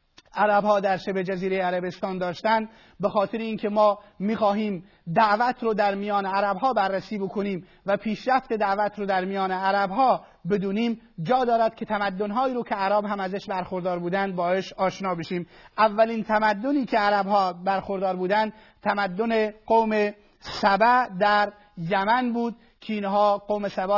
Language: Persian